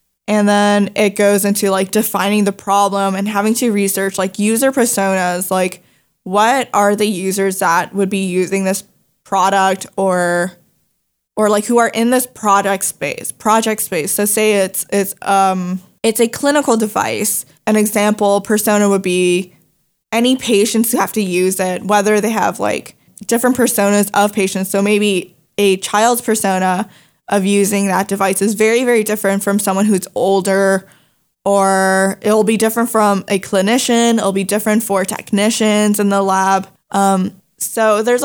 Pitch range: 190-215 Hz